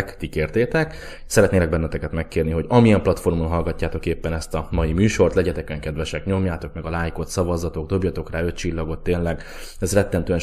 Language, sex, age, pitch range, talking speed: Hungarian, male, 20-39, 80-100 Hz, 160 wpm